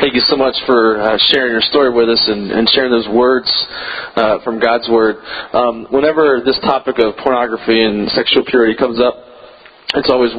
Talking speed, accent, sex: 190 wpm, American, male